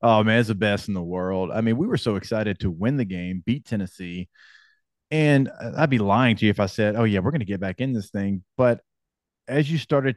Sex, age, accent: male, 30-49, American